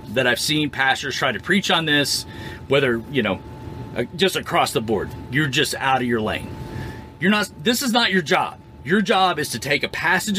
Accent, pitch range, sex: American, 125-190 Hz, male